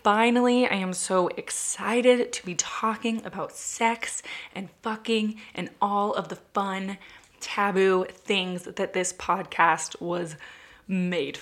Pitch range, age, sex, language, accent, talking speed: 180-235 Hz, 20-39, female, English, American, 125 wpm